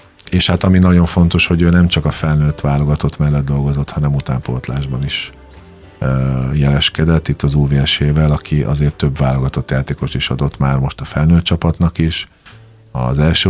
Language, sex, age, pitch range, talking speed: Hungarian, male, 50-69, 70-80 Hz, 160 wpm